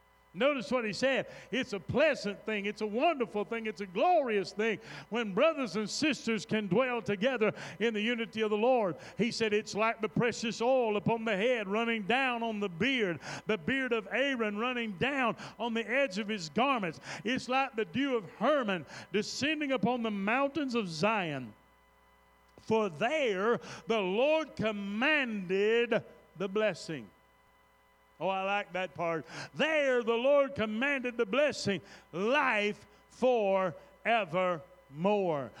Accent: American